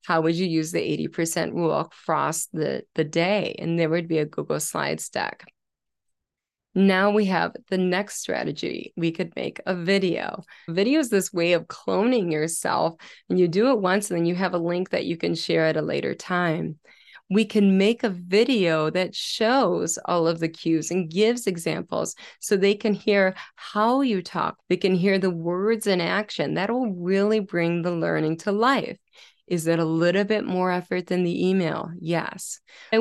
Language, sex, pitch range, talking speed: English, female, 165-205 Hz, 185 wpm